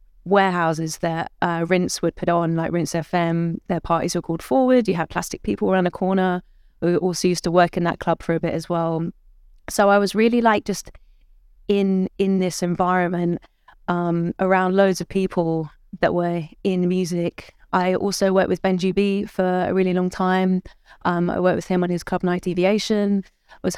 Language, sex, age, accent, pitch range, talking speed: English, female, 20-39, British, 175-195 Hz, 195 wpm